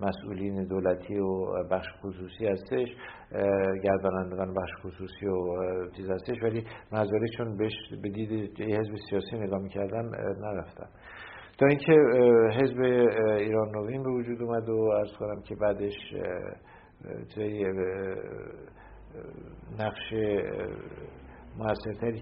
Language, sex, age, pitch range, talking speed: English, male, 50-69, 100-115 Hz, 105 wpm